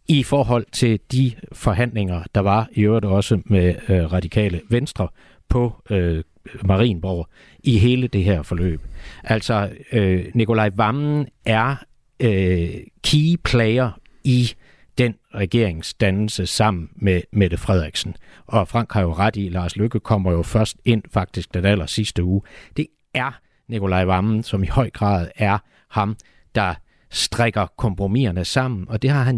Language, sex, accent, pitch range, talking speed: Danish, male, native, 95-120 Hz, 145 wpm